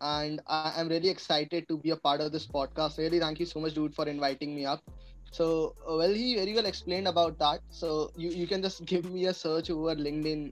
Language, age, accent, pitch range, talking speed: Hindi, 20-39, native, 155-185 Hz, 235 wpm